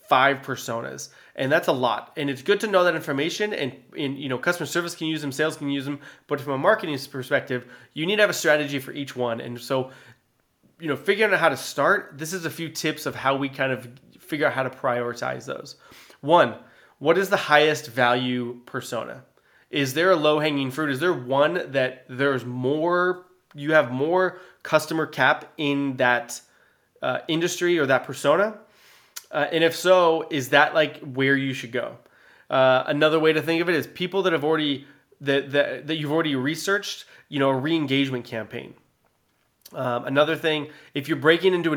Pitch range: 130-155 Hz